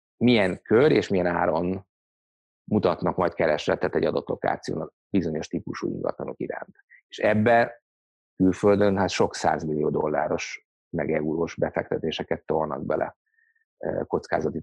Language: Hungarian